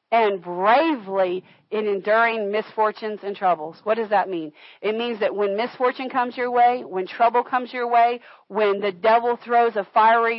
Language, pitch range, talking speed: English, 200-270 Hz, 175 wpm